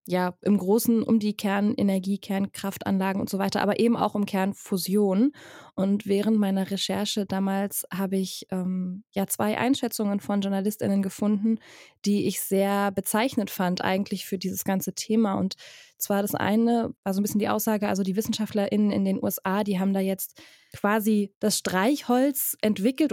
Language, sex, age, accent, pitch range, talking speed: German, female, 20-39, German, 195-220 Hz, 160 wpm